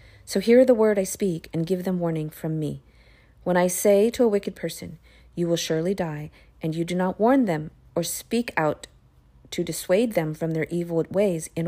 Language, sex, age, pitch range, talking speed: English, female, 40-59, 150-185 Hz, 205 wpm